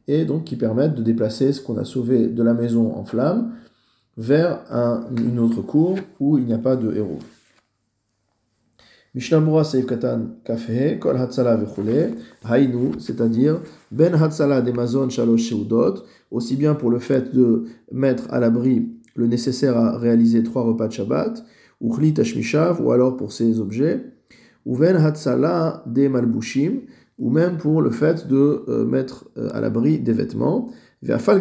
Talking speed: 155 wpm